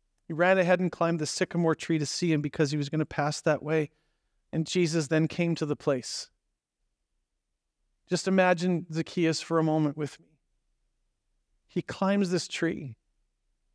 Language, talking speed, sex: English, 165 wpm, male